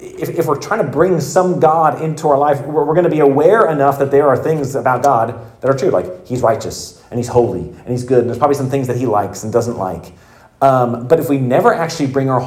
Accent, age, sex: American, 30-49, male